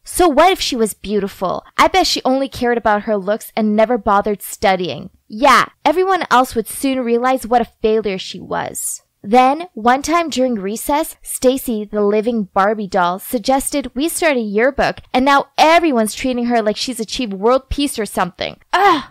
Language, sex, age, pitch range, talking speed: English, female, 20-39, 230-325 Hz, 180 wpm